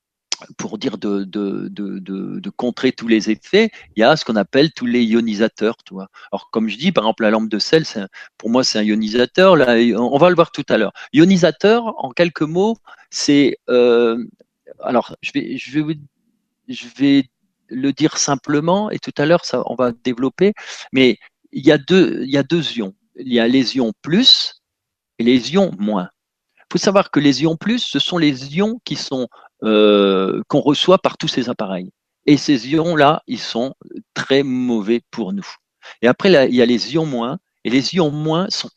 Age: 40-59